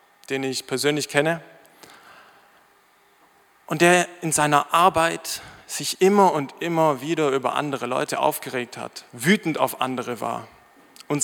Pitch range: 140-215 Hz